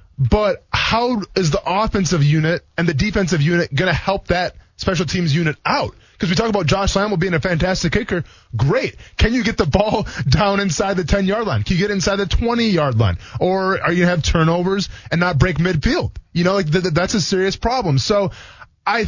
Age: 20-39